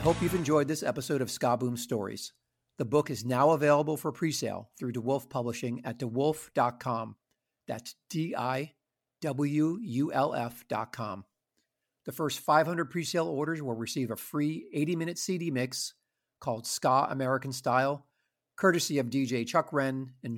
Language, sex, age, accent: English, male, 50-69, American